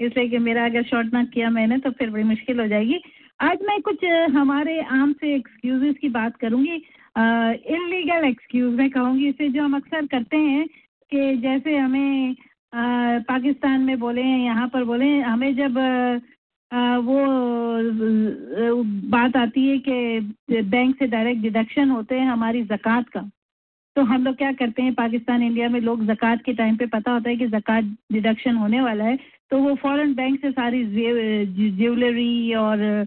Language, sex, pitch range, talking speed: English, female, 235-275 Hz, 120 wpm